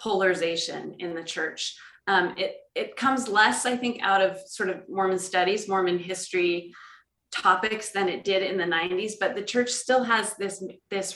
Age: 30-49